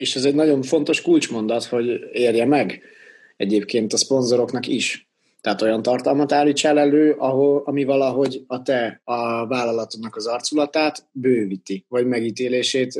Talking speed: 140 wpm